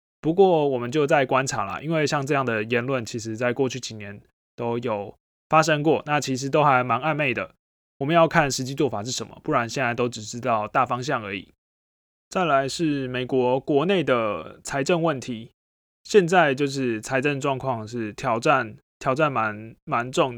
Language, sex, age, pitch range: Chinese, male, 20-39, 115-140 Hz